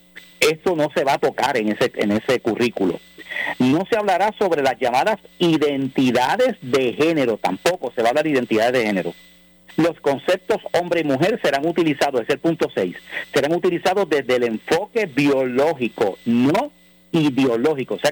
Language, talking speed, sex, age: Spanish, 160 wpm, male, 50-69